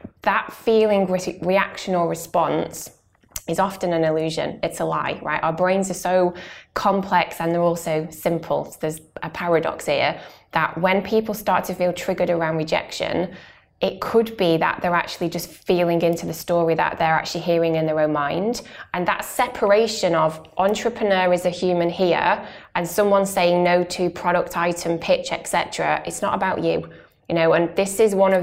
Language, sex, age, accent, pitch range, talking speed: English, female, 20-39, British, 165-185 Hz, 175 wpm